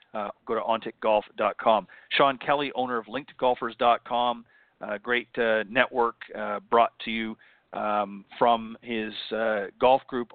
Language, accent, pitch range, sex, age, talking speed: English, American, 110-125 Hz, male, 40-59, 135 wpm